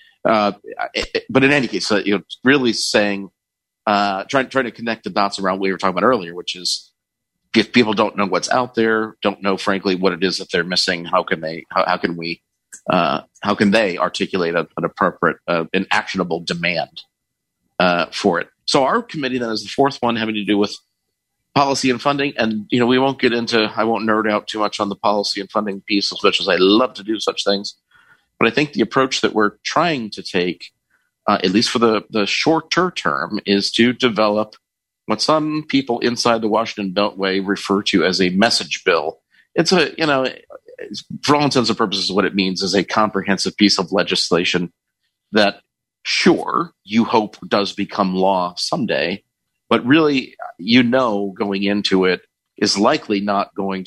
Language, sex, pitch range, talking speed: English, male, 95-120 Hz, 200 wpm